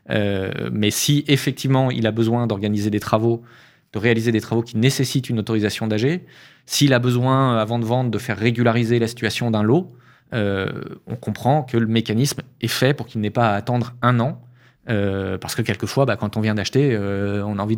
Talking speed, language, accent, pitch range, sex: 205 wpm, French, French, 110-135 Hz, male